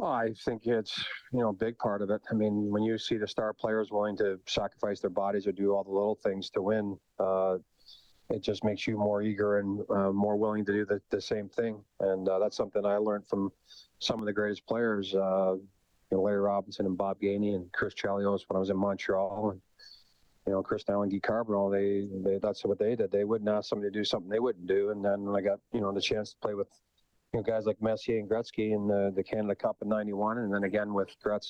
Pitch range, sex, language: 95-110 Hz, male, English